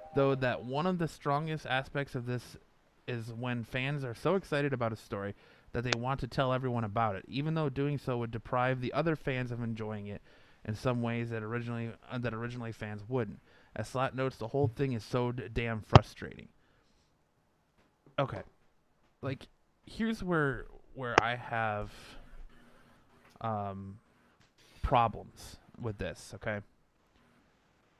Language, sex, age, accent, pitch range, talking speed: English, male, 20-39, American, 110-145 Hz, 150 wpm